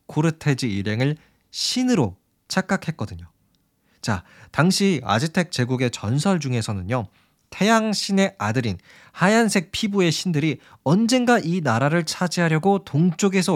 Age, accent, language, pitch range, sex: 20-39, native, Korean, 115-180 Hz, male